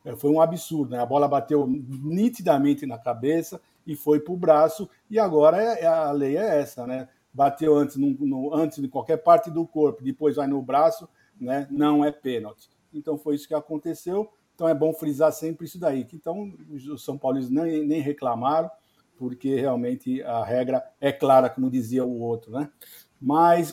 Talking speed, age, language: 185 wpm, 50-69, Portuguese